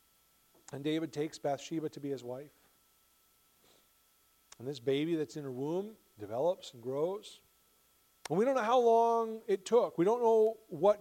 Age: 40-59